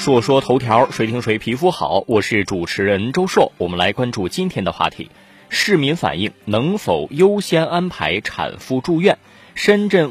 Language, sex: Chinese, male